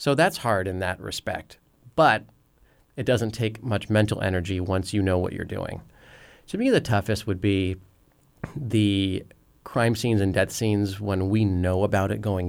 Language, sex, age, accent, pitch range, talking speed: English, male, 30-49, American, 90-115 Hz, 180 wpm